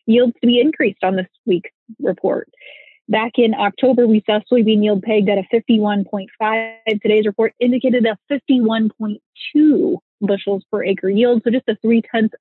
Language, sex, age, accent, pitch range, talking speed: English, female, 20-39, American, 205-240 Hz, 160 wpm